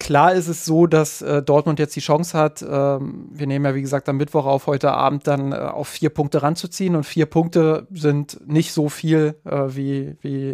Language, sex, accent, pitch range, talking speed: German, male, German, 140-155 Hz, 215 wpm